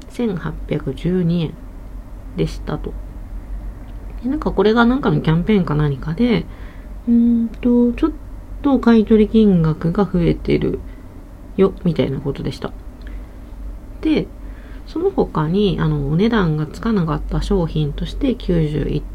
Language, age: Japanese, 40-59